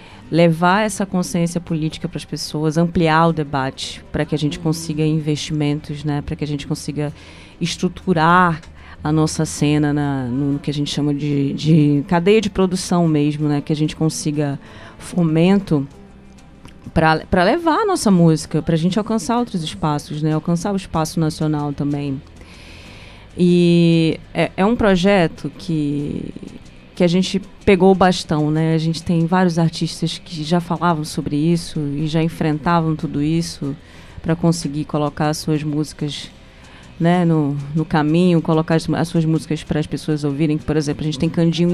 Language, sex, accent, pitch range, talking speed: Portuguese, female, Brazilian, 150-170 Hz, 160 wpm